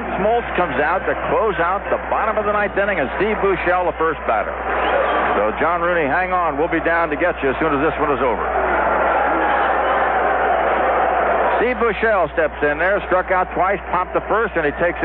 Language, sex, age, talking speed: English, male, 60-79, 200 wpm